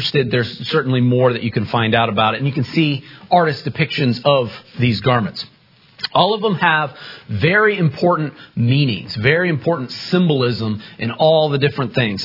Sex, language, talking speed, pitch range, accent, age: male, English, 165 wpm, 125-165 Hz, American, 40-59